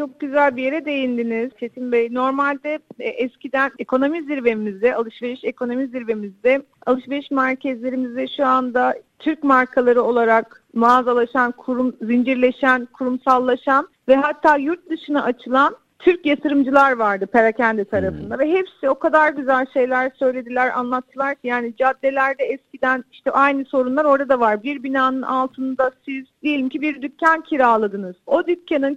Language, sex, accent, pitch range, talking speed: Turkish, female, native, 255-315 Hz, 135 wpm